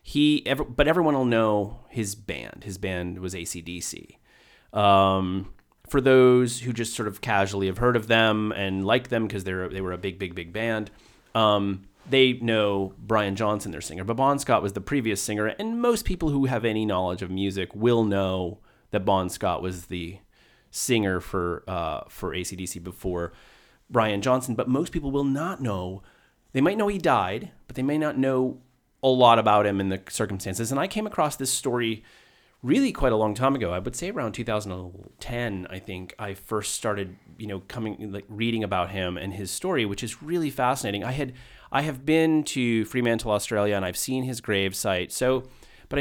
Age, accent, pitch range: 30-49, American, 95-130 Hz